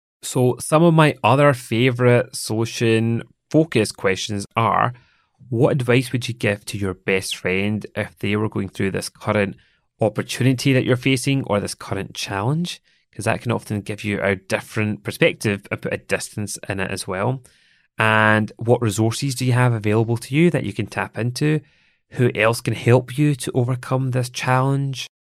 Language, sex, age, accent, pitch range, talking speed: English, male, 30-49, British, 105-130 Hz, 175 wpm